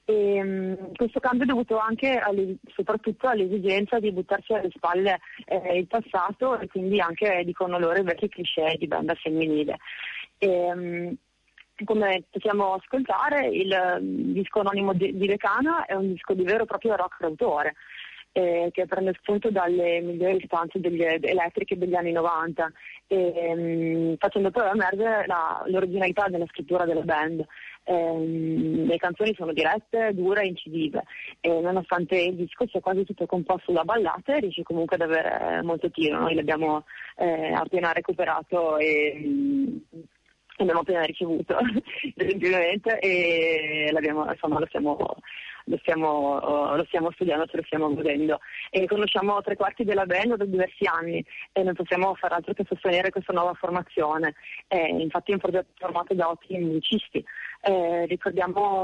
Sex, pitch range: female, 170-200 Hz